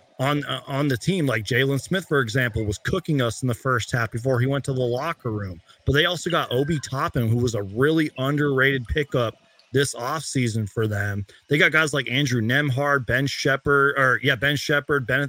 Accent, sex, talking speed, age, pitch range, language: American, male, 205 wpm, 30-49, 120-155 Hz, English